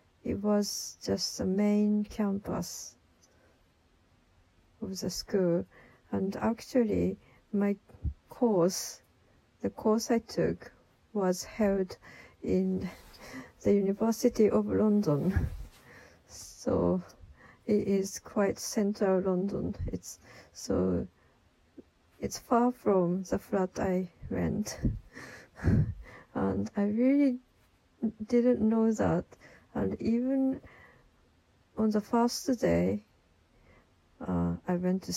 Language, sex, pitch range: Japanese, female, 165-215 Hz